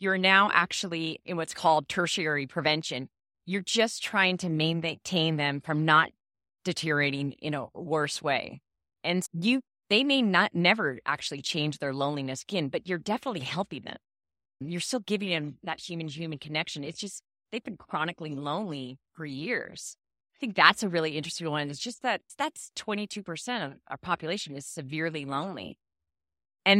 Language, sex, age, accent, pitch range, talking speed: English, female, 30-49, American, 145-185 Hz, 160 wpm